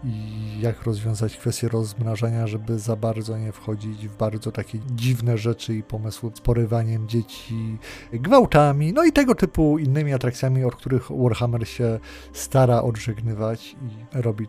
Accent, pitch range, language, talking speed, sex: native, 115-135 Hz, Polish, 145 wpm, male